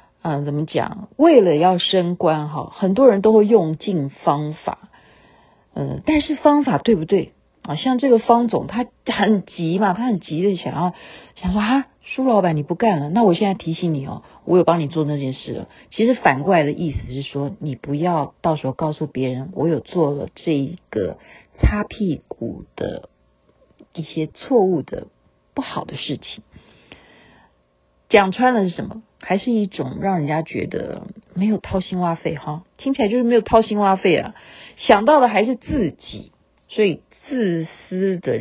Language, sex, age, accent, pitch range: Chinese, female, 50-69, native, 150-215 Hz